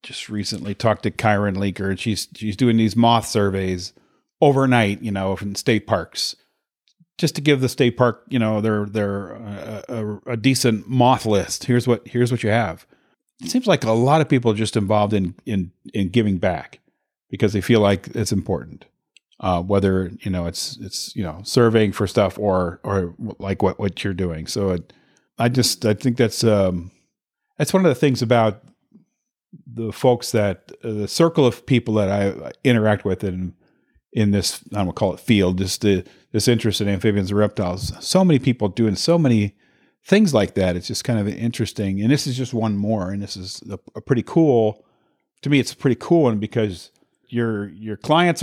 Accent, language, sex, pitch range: American, English, male, 100-125 Hz